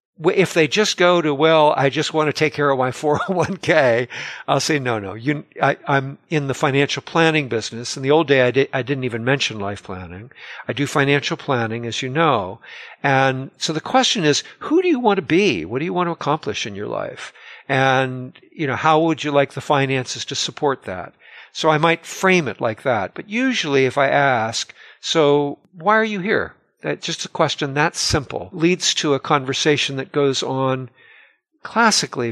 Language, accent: English, American